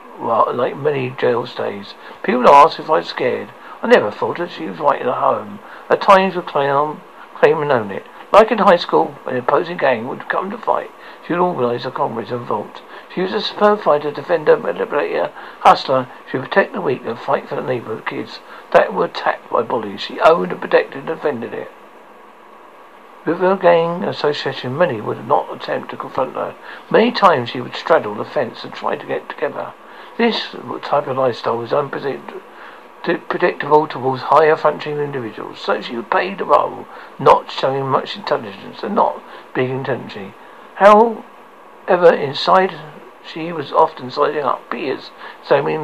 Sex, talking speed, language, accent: male, 180 wpm, English, British